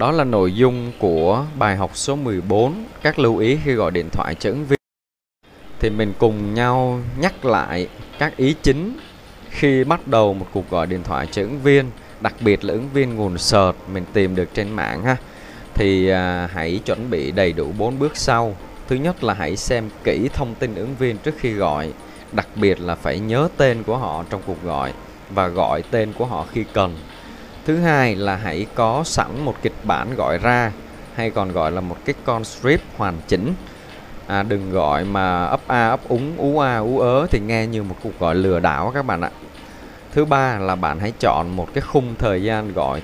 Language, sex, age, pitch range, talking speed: Vietnamese, male, 20-39, 90-130 Hz, 205 wpm